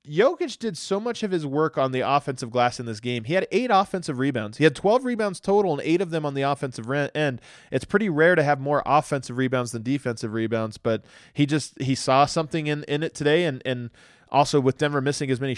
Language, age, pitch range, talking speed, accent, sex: English, 20-39, 140-185 Hz, 235 wpm, American, male